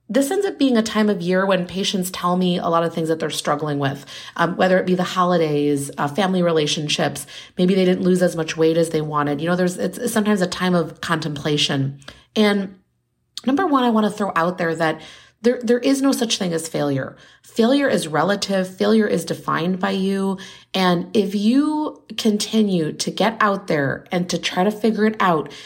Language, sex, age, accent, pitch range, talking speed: English, female, 30-49, American, 175-220 Hz, 210 wpm